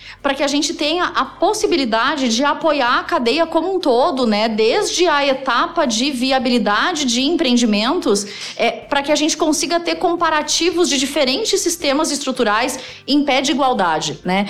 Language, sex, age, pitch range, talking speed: Portuguese, female, 30-49, 220-290 Hz, 155 wpm